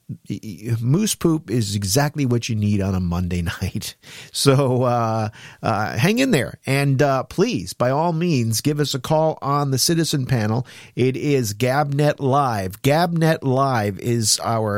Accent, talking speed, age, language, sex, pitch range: American, 160 wpm, 50-69, English, male, 105-140 Hz